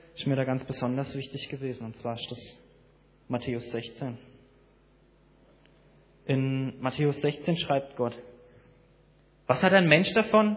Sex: male